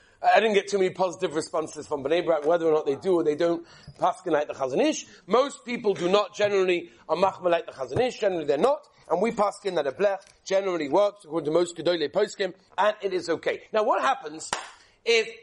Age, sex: 40-59, male